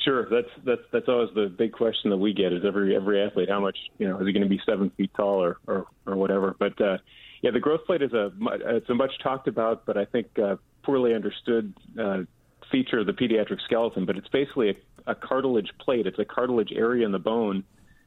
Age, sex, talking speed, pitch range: 40-59, male, 235 wpm, 95-115 Hz